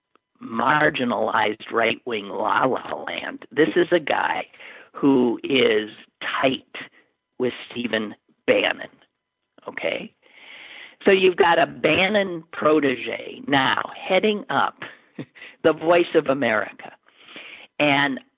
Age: 50-69